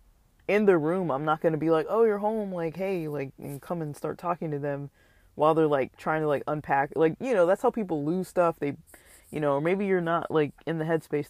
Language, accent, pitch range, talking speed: English, American, 145-170 Hz, 250 wpm